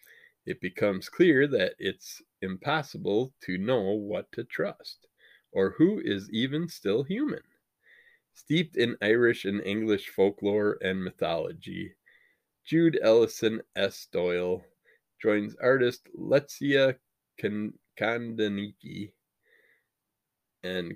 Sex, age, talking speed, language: male, 20-39, 95 wpm, English